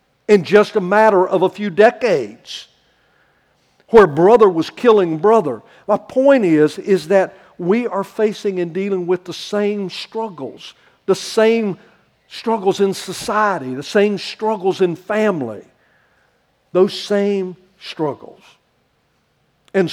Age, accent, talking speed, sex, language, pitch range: 60-79, American, 125 wpm, male, English, 135-205 Hz